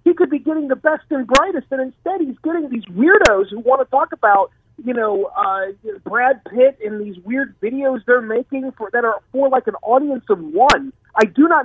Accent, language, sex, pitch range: American, English, male, 195-265 Hz